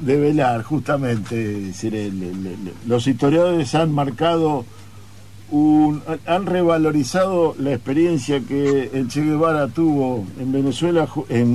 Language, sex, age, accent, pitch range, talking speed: Spanish, male, 50-69, Argentinian, 110-155 Hz, 100 wpm